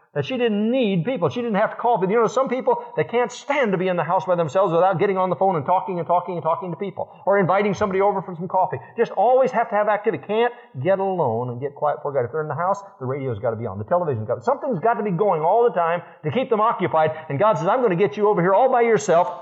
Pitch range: 135-205 Hz